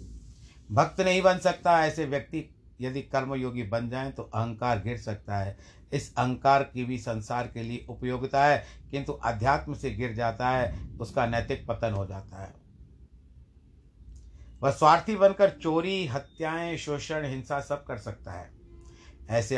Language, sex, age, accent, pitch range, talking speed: Hindi, male, 60-79, native, 105-145 Hz, 145 wpm